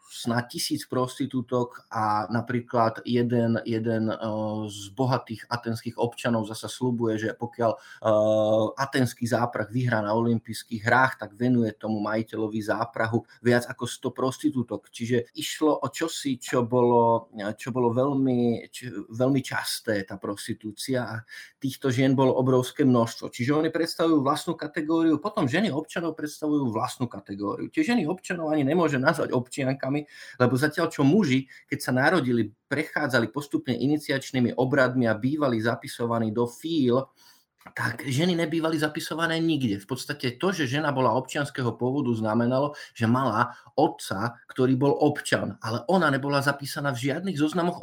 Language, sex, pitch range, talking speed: Slovak, male, 115-145 Hz, 140 wpm